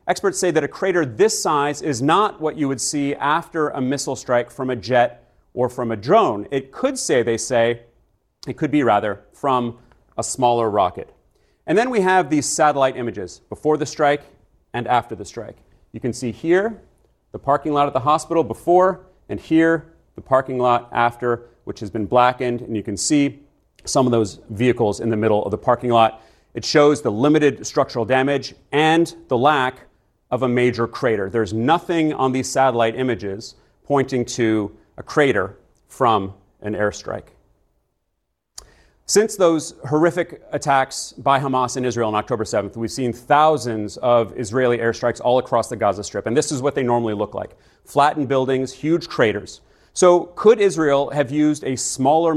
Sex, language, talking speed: male, English, 175 wpm